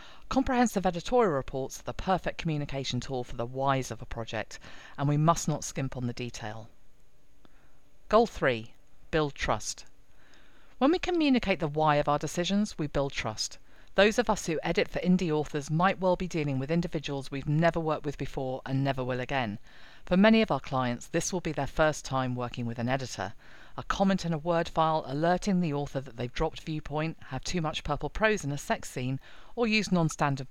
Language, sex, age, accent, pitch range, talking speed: English, female, 40-59, British, 130-175 Hz, 195 wpm